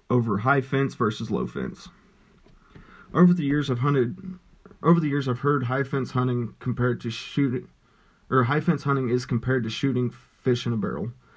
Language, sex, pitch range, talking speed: English, male, 120-135 Hz, 180 wpm